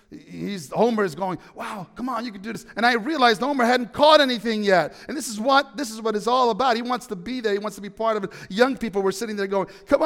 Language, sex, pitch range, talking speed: English, male, 155-220 Hz, 285 wpm